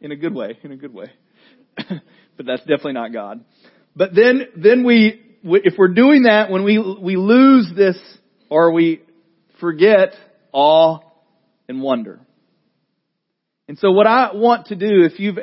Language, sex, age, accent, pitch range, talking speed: English, male, 40-59, American, 145-205 Hz, 160 wpm